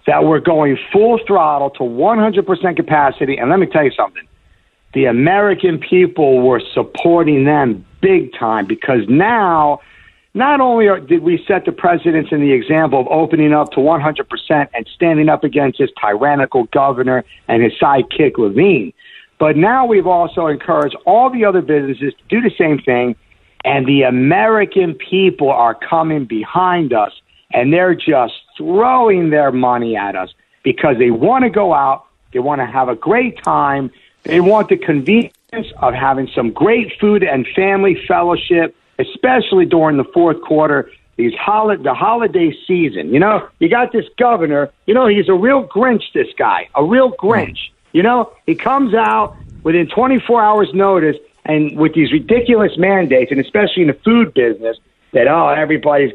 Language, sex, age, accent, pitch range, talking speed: English, male, 50-69, American, 140-215 Hz, 165 wpm